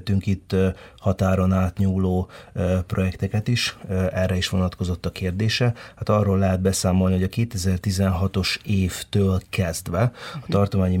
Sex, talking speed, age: male, 115 wpm, 30-49